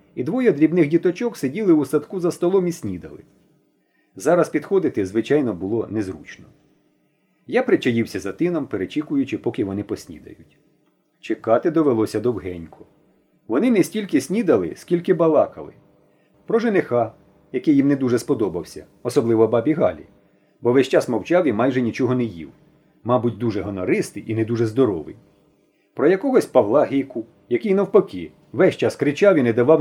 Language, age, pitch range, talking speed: Ukrainian, 40-59, 120-190 Hz, 145 wpm